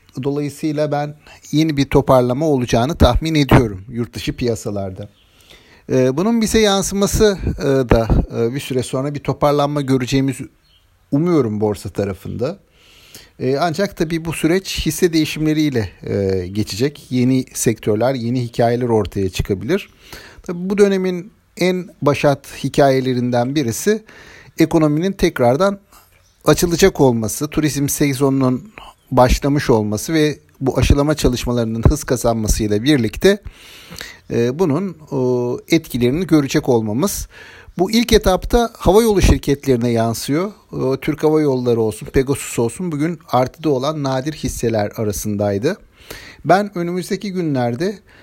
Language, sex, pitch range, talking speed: Turkish, male, 120-155 Hz, 105 wpm